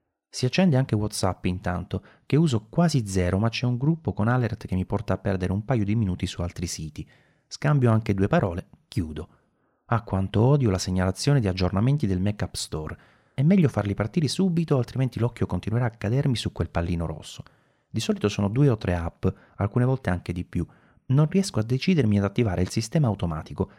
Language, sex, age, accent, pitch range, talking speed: Italian, male, 30-49, native, 95-130 Hz, 195 wpm